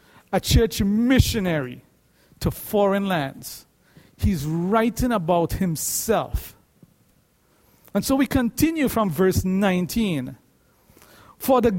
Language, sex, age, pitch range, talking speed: English, male, 50-69, 185-250 Hz, 95 wpm